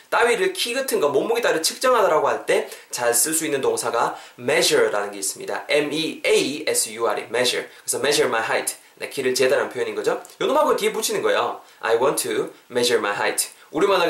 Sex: male